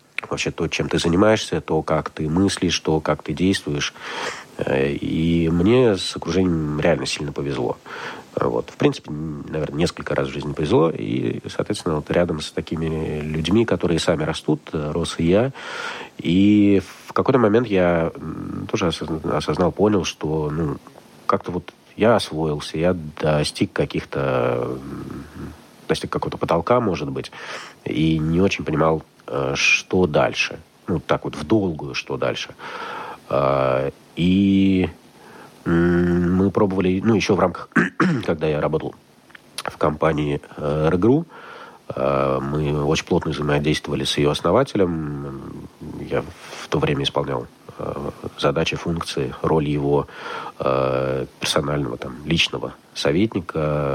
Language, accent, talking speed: Russian, native, 125 wpm